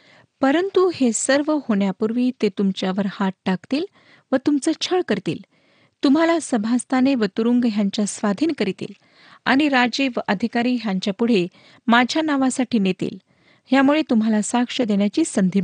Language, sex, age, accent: Marathi, female, 40-59, native